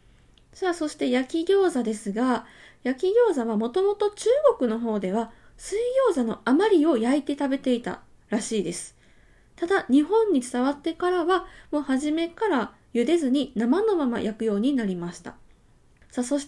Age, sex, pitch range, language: 20-39, female, 225-325 Hz, Japanese